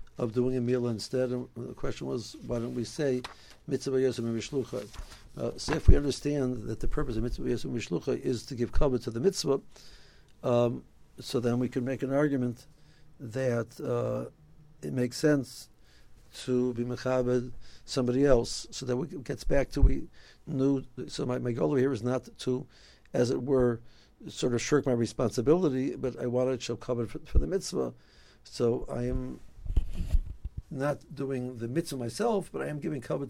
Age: 60-79